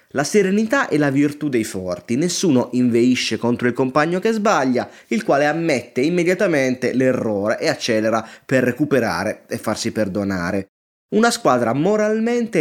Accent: native